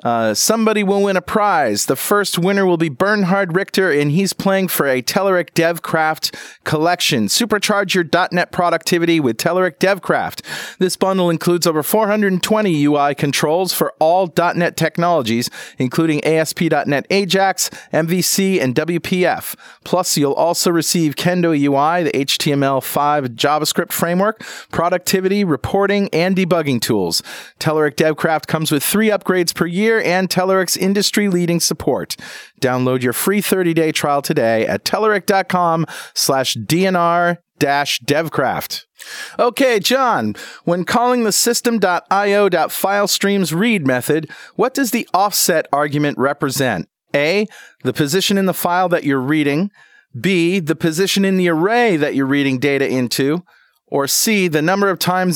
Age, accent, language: 40-59, American, English